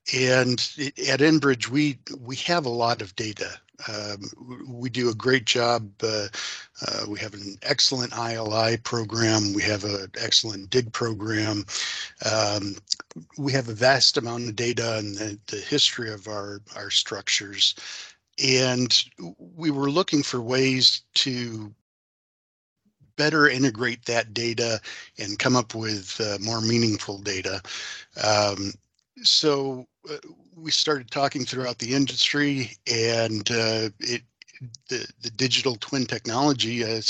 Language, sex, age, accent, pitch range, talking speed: English, male, 50-69, American, 110-130 Hz, 135 wpm